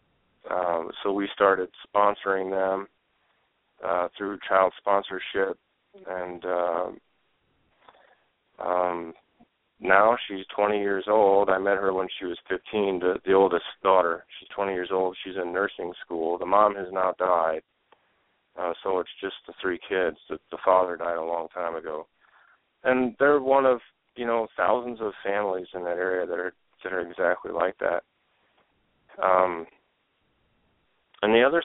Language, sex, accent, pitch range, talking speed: English, male, American, 90-105 Hz, 150 wpm